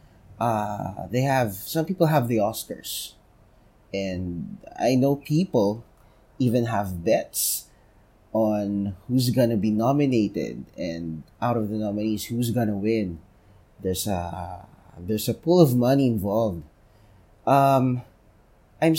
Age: 20-39